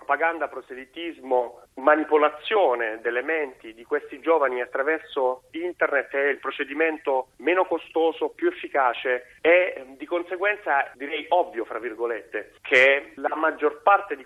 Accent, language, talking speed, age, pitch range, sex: native, Italian, 120 wpm, 40-59, 130-175 Hz, male